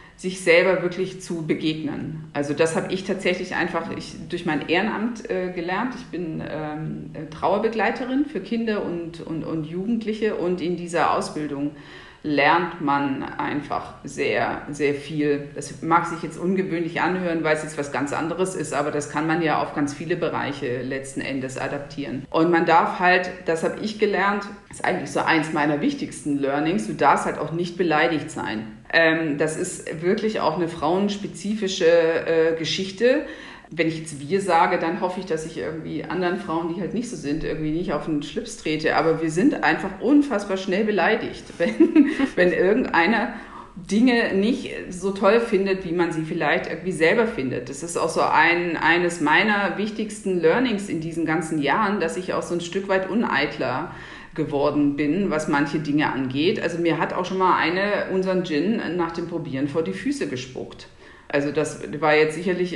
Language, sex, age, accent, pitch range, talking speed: German, female, 50-69, German, 155-190 Hz, 175 wpm